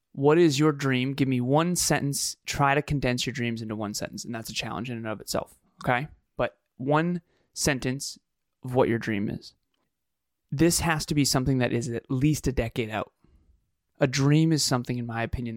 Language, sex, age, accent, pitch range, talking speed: English, male, 20-39, American, 120-150 Hz, 200 wpm